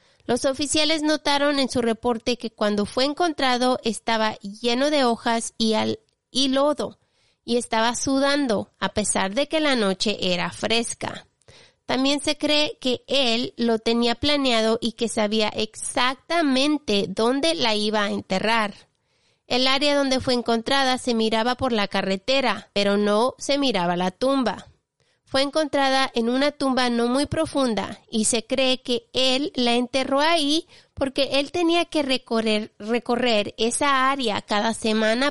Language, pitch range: Spanish, 220-270 Hz